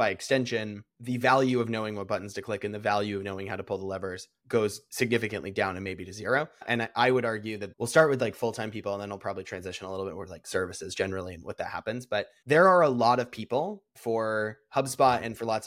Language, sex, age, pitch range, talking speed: English, male, 20-39, 100-120 Hz, 255 wpm